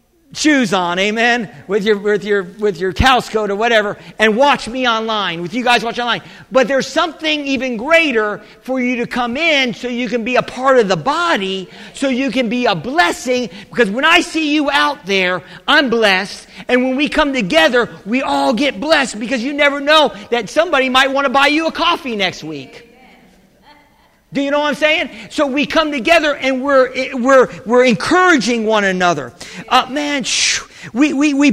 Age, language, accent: 50-69, English, American